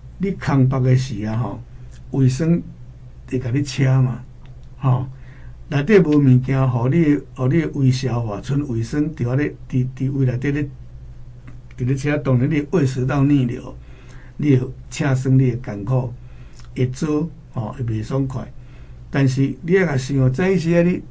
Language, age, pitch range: Chinese, 60-79, 125-145 Hz